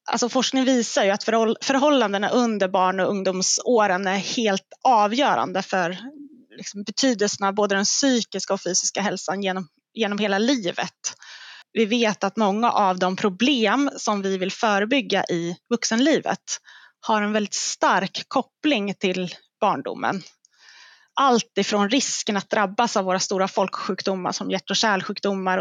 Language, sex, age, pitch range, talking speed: Swedish, female, 20-39, 190-230 Hz, 135 wpm